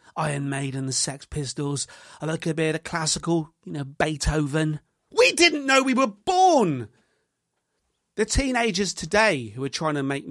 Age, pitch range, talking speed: 30-49, 130-185 Hz, 165 wpm